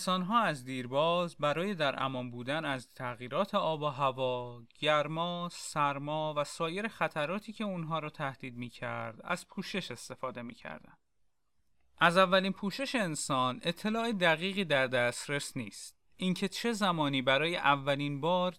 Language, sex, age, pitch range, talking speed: Persian, male, 30-49, 145-195 Hz, 140 wpm